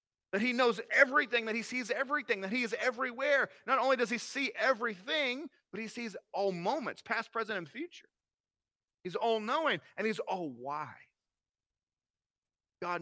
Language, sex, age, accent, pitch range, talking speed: English, male, 40-59, American, 165-240 Hz, 160 wpm